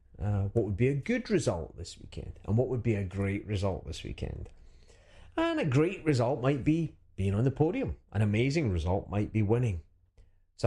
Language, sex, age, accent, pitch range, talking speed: English, male, 30-49, British, 95-125 Hz, 195 wpm